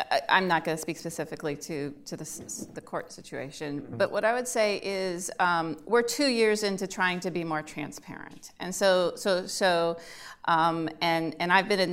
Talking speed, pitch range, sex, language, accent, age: 190 wpm, 165-200 Hz, female, English, American, 30-49